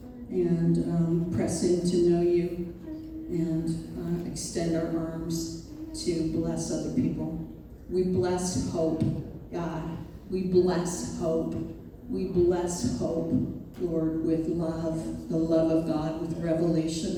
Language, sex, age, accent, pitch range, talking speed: English, female, 40-59, American, 155-175 Hz, 120 wpm